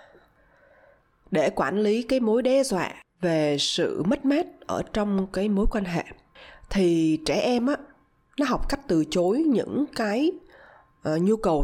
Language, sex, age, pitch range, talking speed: Vietnamese, female, 20-39, 185-260 Hz, 150 wpm